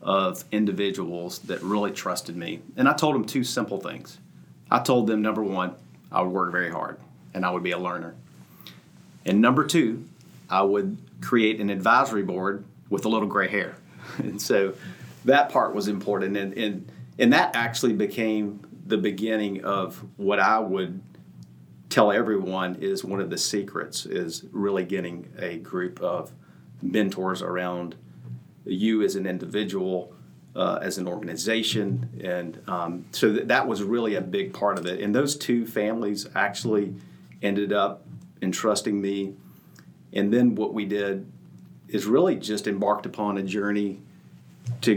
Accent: American